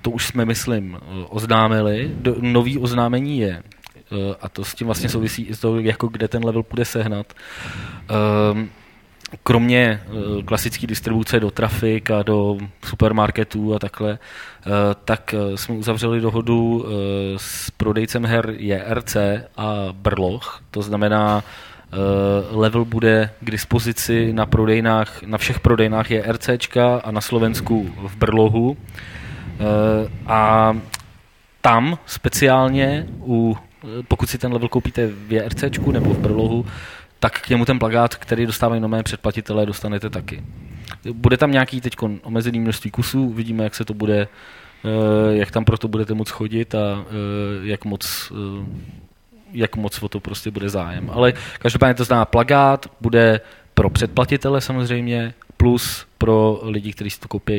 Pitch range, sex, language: 105-120 Hz, male, Czech